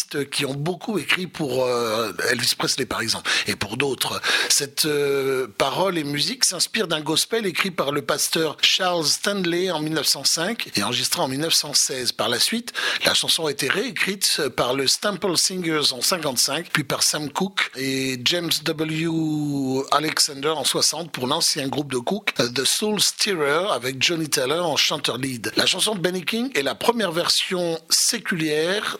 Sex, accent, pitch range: male, French, 135-185 Hz